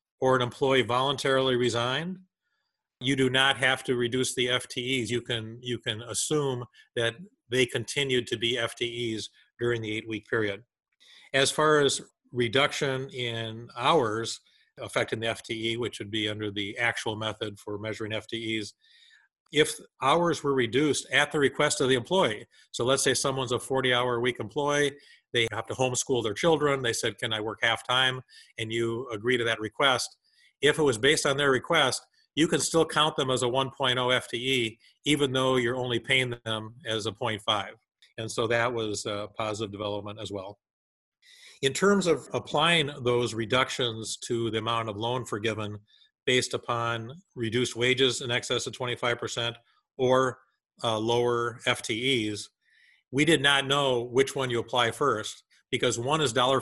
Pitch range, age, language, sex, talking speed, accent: 115-130 Hz, 40-59, English, male, 165 wpm, American